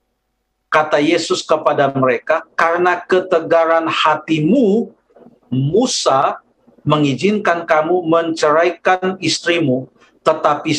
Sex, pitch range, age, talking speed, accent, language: male, 155-200 Hz, 50-69, 70 wpm, native, Indonesian